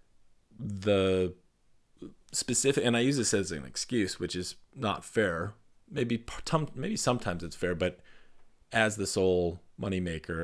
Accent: American